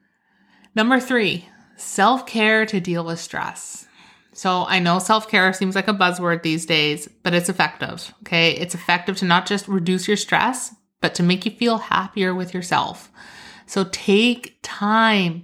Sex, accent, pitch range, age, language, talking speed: female, American, 190-235 Hz, 30-49, English, 155 wpm